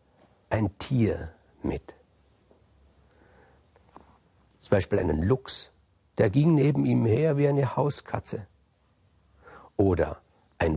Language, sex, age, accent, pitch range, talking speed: German, male, 50-69, German, 105-145 Hz, 95 wpm